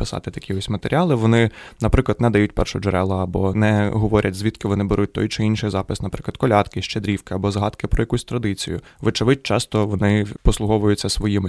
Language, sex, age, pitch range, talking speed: Ukrainian, male, 20-39, 100-115 Hz, 165 wpm